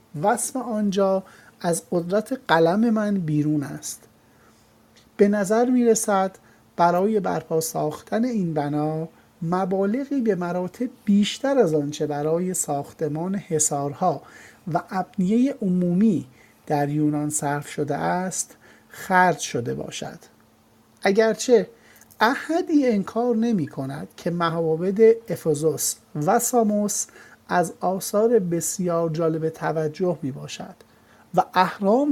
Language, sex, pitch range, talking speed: Persian, male, 160-220 Hz, 105 wpm